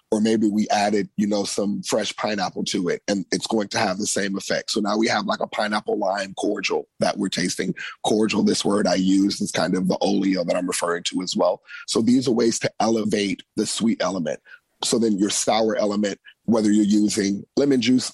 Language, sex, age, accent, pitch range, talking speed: English, male, 30-49, American, 105-120 Hz, 210 wpm